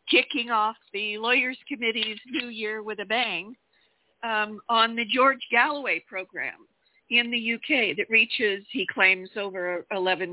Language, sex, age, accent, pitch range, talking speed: English, female, 50-69, American, 190-240 Hz, 145 wpm